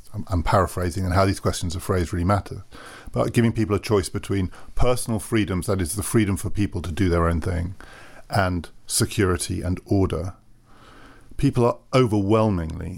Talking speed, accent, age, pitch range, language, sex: 165 wpm, British, 50-69, 95-115 Hz, English, male